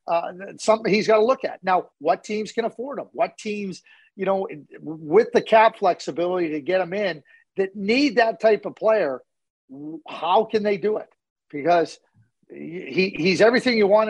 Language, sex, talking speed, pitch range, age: English, male, 180 wpm, 175-235 Hz, 40-59